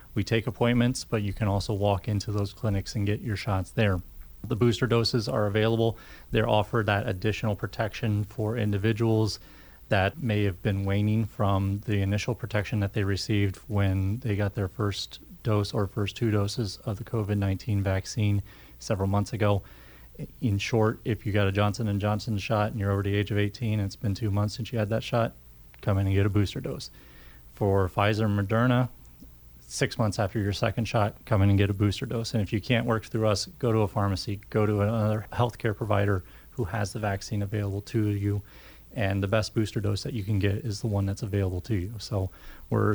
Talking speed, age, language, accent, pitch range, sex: 205 wpm, 30-49, English, American, 100-115 Hz, male